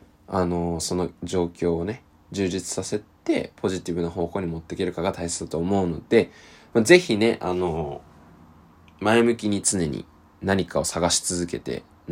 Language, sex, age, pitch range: Japanese, male, 20-39, 85-110 Hz